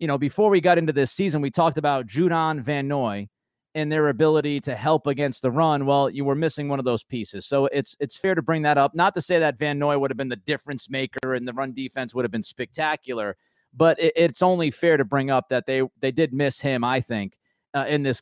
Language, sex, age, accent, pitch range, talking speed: English, male, 30-49, American, 135-160 Hz, 255 wpm